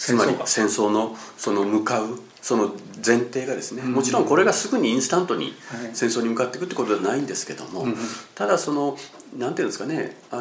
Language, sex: Japanese, male